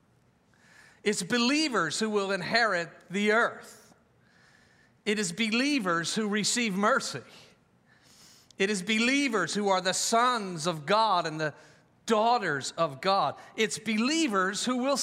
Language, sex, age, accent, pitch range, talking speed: English, male, 50-69, American, 190-250 Hz, 125 wpm